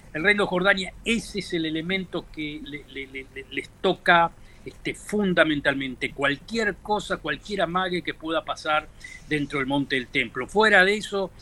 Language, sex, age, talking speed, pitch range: Spanish, male, 50-69, 140 wpm, 140-175 Hz